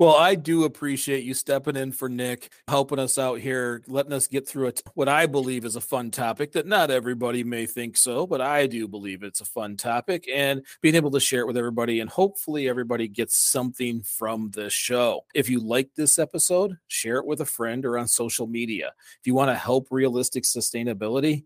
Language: English